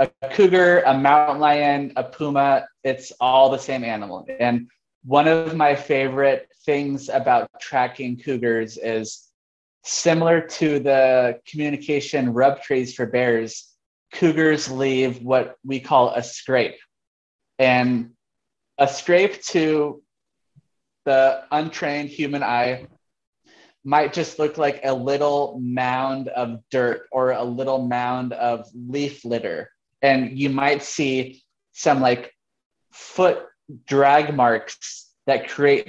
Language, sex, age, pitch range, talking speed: English, male, 20-39, 125-150 Hz, 120 wpm